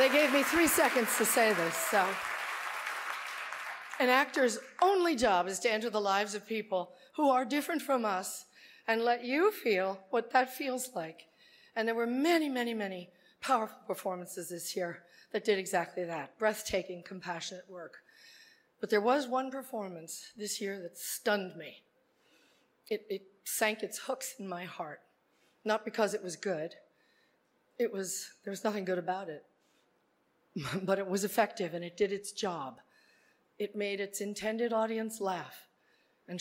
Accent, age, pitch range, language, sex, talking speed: American, 40-59, 190-250 Hz, English, female, 155 wpm